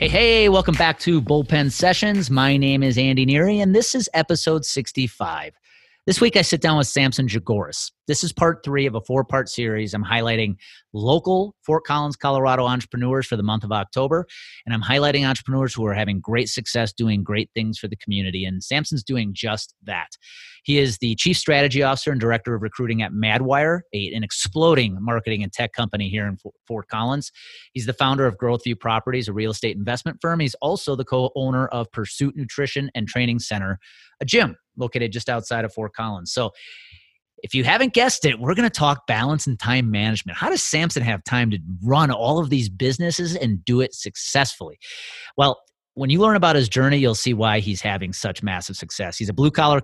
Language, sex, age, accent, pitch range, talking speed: English, male, 30-49, American, 110-145 Hz, 200 wpm